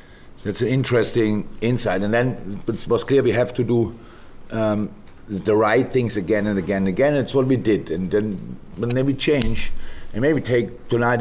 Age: 50-69